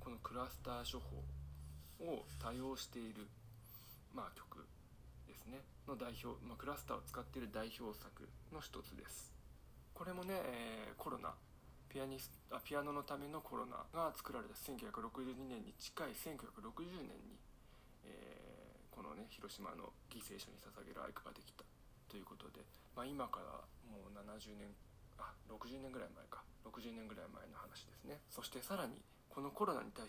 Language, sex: Japanese, male